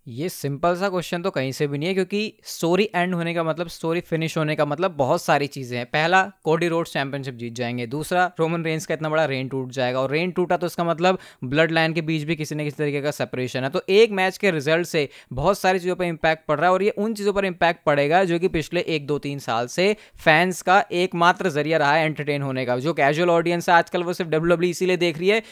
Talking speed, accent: 255 wpm, native